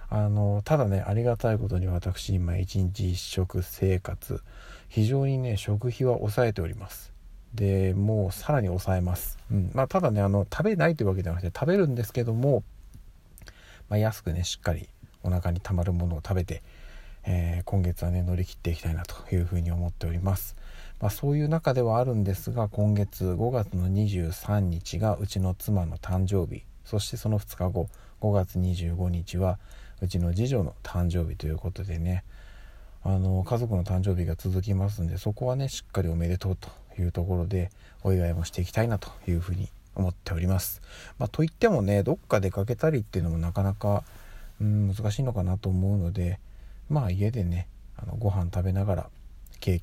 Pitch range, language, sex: 90-105 Hz, Japanese, male